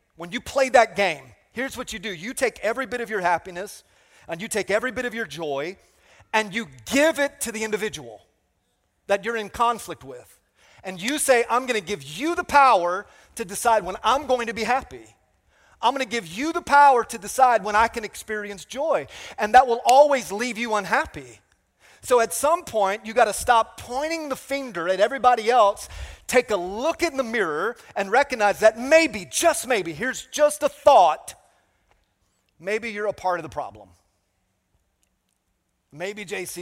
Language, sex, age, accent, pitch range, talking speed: English, male, 30-49, American, 145-245 Hz, 185 wpm